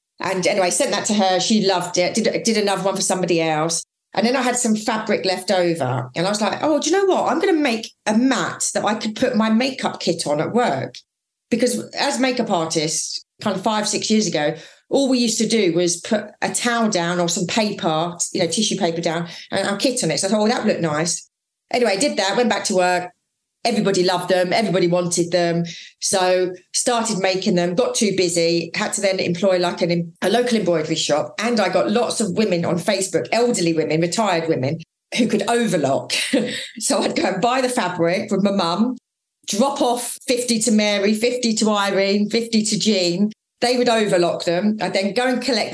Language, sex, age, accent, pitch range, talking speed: English, female, 30-49, British, 180-230 Hz, 220 wpm